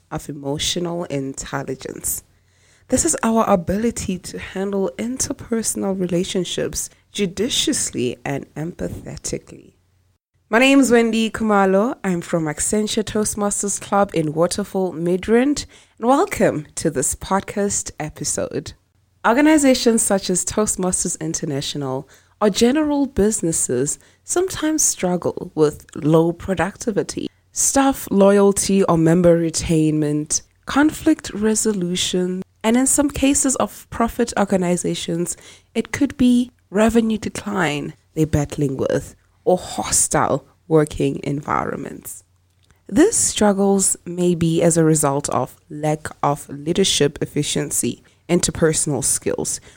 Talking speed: 105 wpm